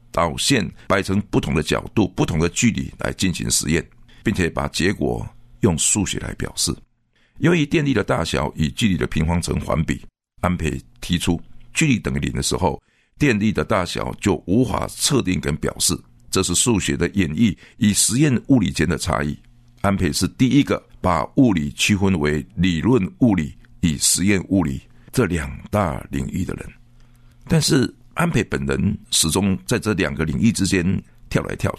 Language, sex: Chinese, male